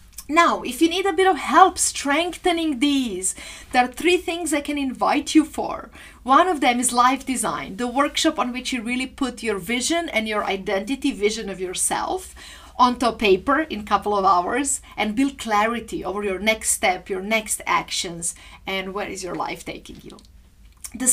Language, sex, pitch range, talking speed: English, female, 205-275 Hz, 185 wpm